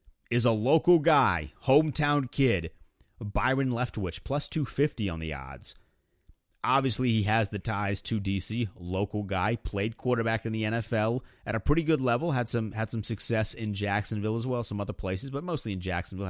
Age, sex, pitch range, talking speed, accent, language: 30-49, male, 95-120 Hz, 180 wpm, American, English